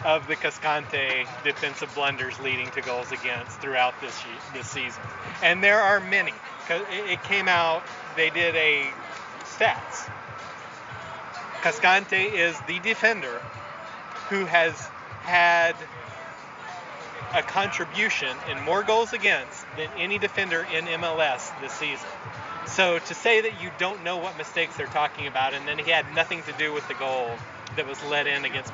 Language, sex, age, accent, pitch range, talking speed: English, male, 30-49, American, 140-175 Hz, 150 wpm